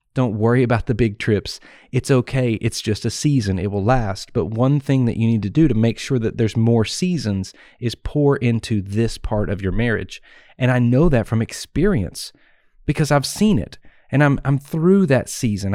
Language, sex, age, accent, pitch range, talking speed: English, male, 30-49, American, 105-135 Hz, 205 wpm